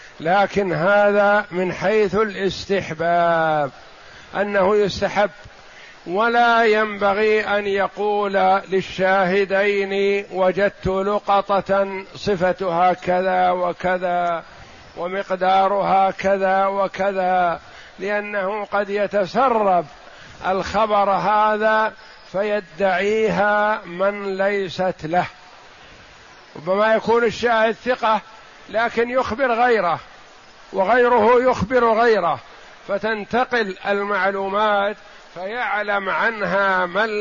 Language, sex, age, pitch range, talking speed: Arabic, male, 50-69, 190-210 Hz, 70 wpm